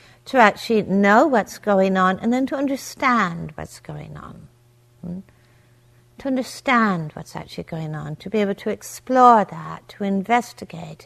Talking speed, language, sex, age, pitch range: 150 wpm, English, female, 60-79, 165-205 Hz